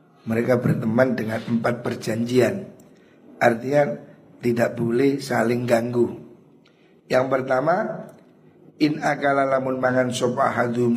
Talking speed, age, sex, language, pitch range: 90 wpm, 50-69, male, Indonesian, 120-145 Hz